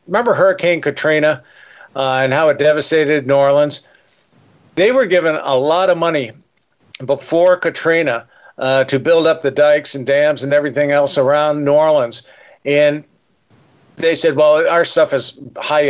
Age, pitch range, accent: 50-69, 140-165 Hz, American